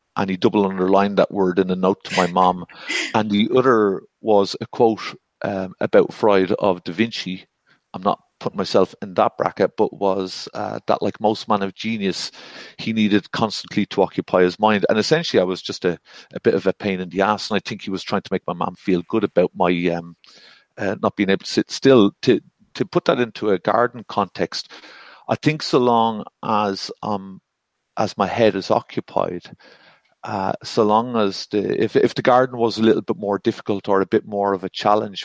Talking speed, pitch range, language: 210 wpm, 95-110 Hz, English